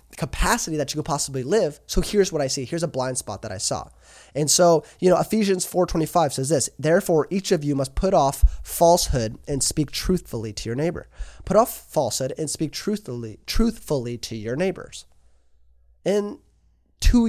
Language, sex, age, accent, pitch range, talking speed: English, male, 20-39, American, 125-175 Hz, 180 wpm